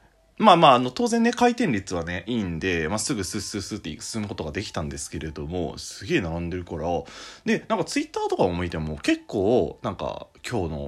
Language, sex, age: Japanese, male, 20-39